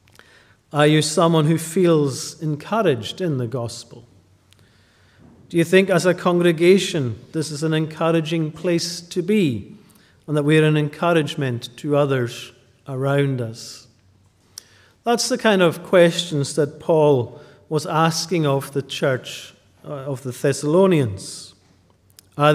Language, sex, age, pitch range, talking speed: English, male, 50-69, 135-170 Hz, 130 wpm